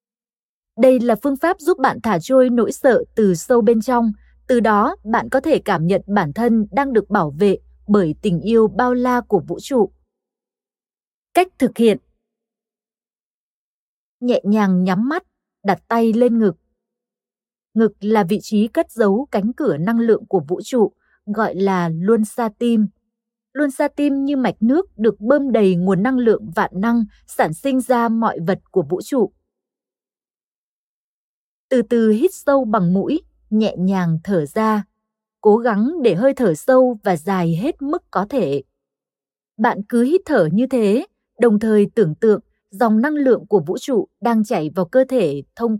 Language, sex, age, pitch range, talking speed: Vietnamese, female, 20-39, 195-250 Hz, 170 wpm